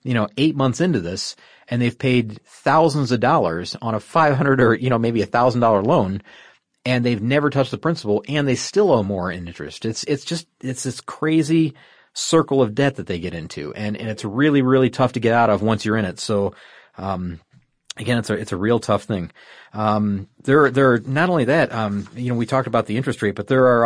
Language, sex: English, male